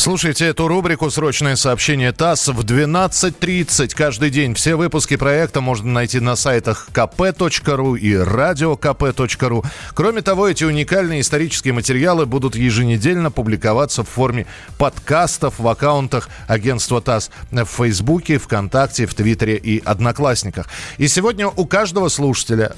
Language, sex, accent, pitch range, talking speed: Russian, male, native, 120-160 Hz, 125 wpm